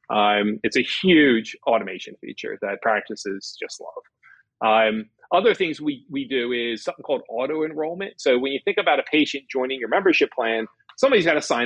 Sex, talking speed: male, 180 wpm